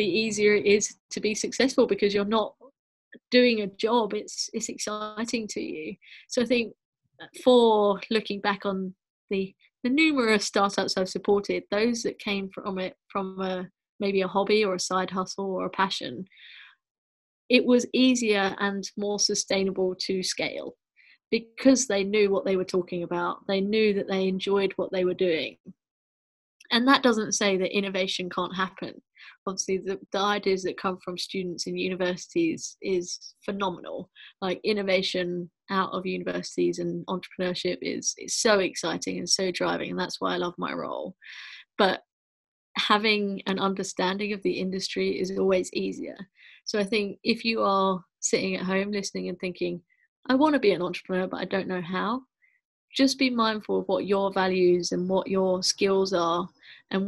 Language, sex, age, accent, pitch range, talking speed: English, female, 30-49, British, 185-215 Hz, 170 wpm